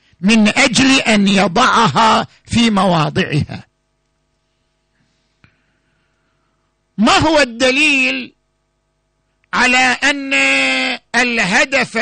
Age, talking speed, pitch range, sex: 50-69, 60 wpm, 185-255 Hz, male